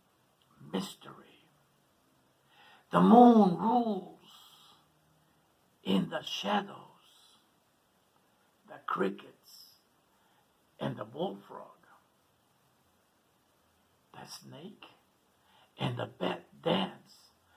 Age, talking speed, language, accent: 60-79, 60 wpm, English, American